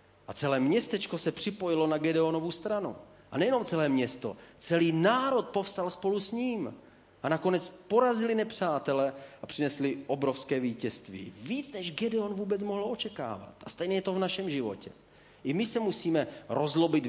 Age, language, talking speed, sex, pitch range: 30-49, Czech, 155 wpm, male, 125-170 Hz